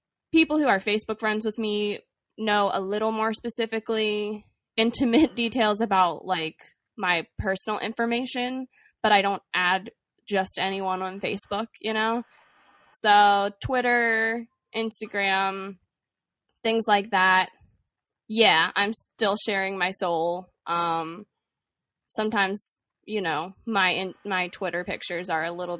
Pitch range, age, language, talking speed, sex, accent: 195-230 Hz, 20-39, English, 125 wpm, female, American